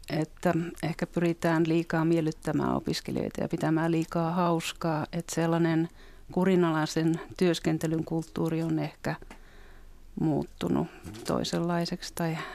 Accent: native